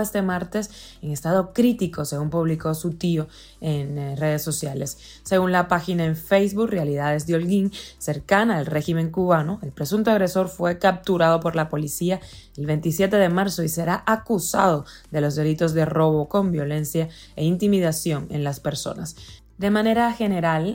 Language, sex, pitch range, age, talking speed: Spanish, female, 155-190 Hz, 20-39, 155 wpm